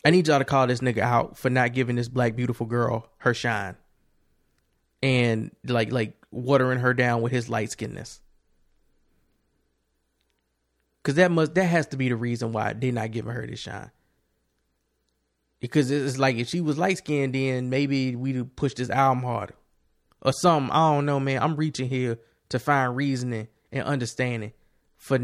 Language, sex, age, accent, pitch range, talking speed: English, male, 20-39, American, 110-135 Hz, 175 wpm